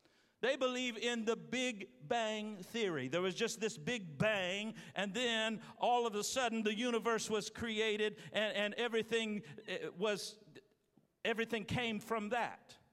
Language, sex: English, male